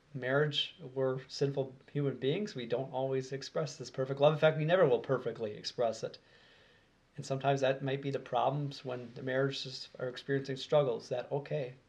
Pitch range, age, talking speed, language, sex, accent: 130-155 Hz, 30-49, 175 wpm, English, male, American